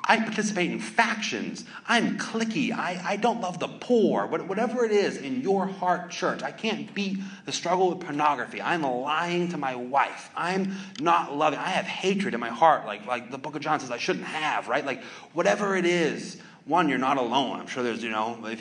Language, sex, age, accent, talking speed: English, male, 30-49, American, 215 wpm